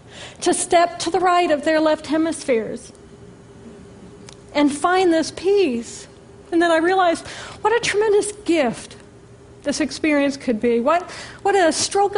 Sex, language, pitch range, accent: female, English, 230-320 Hz, American